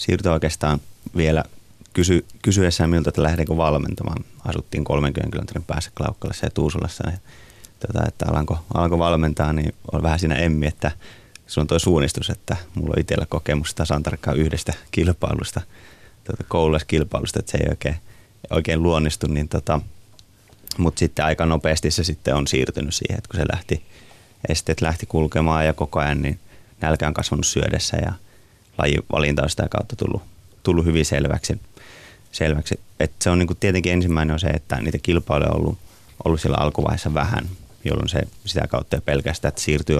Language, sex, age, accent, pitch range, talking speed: Finnish, male, 30-49, native, 75-100 Hz, 160 wpm